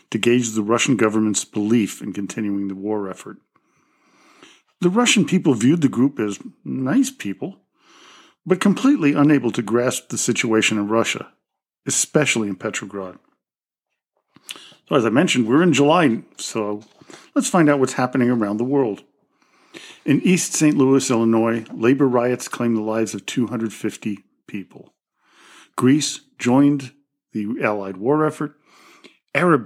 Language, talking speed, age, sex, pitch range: English, 140 wpm, 50-69, male, 110-140 Hz